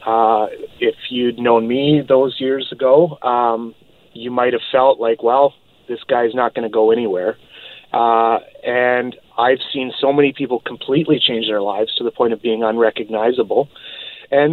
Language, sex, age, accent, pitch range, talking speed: English, male, 30-49, American, 115-155 Hz, 160 wpm